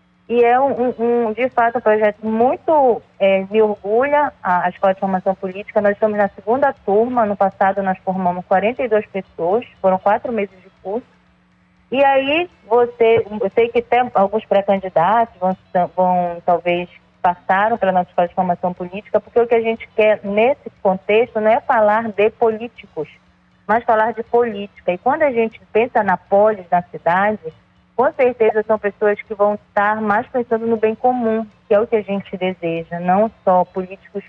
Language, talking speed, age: Portuguese, 180 wpm, 20-39